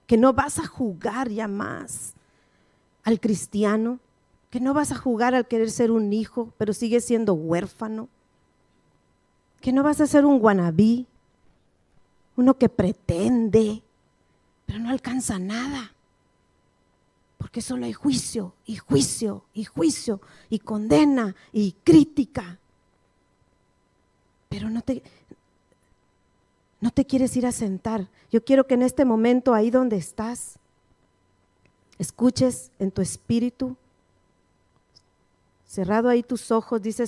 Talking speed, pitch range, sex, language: 125 wpm, 185-245 Hz, female, English